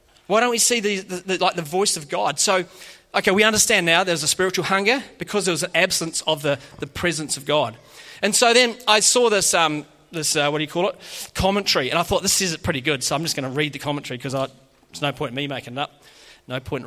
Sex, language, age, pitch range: male, English, 30-49, 160-210 Hz